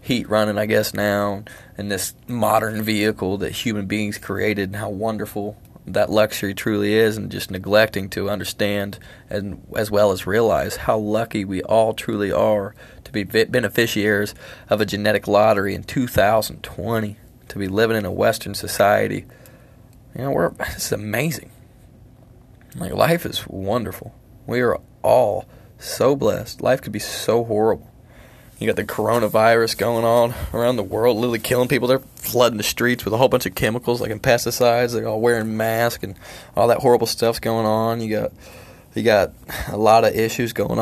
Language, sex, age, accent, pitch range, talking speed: English, male, 20-39, American, 105-120 Hz, 170 wpm